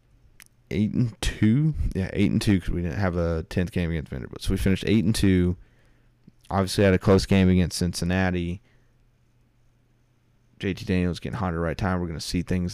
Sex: male